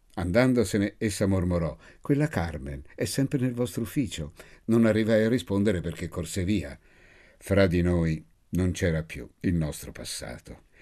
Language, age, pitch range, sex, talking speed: Italian, 60-79, 85-110 Hz, male, 145 wpm